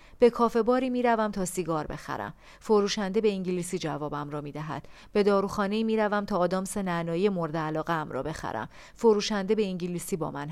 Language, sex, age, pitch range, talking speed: Persian, female, 40-59, 170-220 Hz, 175 wpm